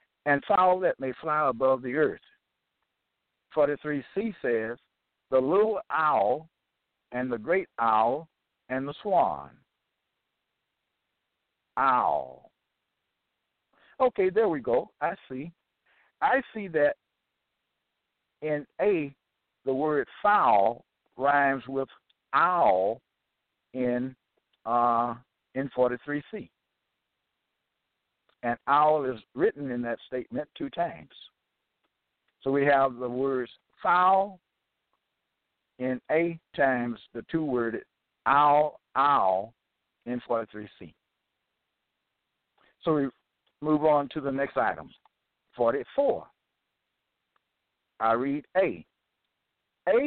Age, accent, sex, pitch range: 60-79, American, male, 125-155 Hz